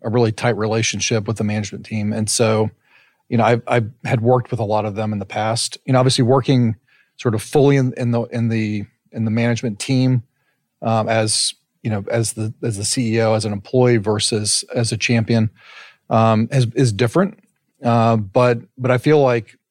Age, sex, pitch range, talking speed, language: 40-59, male, 110-125 Hz, 200 wpm, English